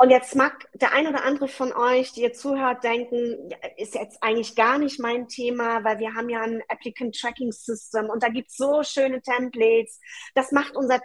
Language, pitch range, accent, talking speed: German, 220-265 Hz, German, 195 wpm